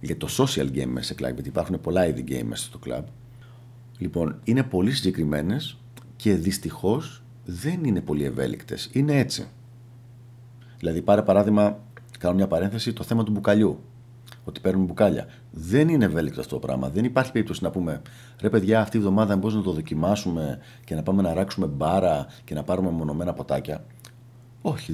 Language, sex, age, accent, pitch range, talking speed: Greek, male, 40-59, native, 90-120 Hz, 170 wpm